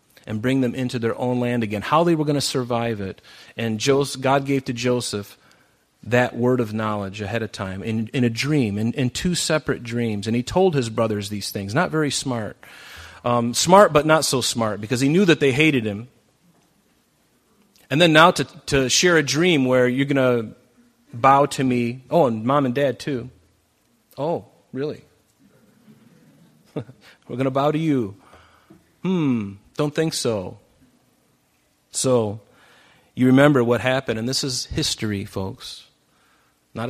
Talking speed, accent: 170 wpm, American